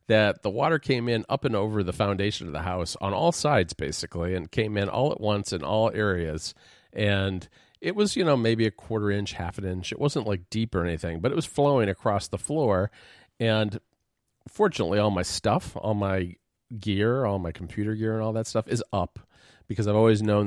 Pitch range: 90-110 Hz